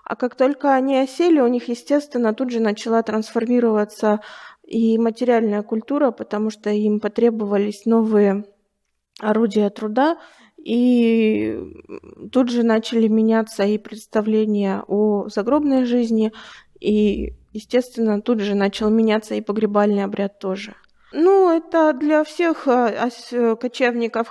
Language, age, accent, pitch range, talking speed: Russian, 20-39, native, 220-270 Hz, 115 wpm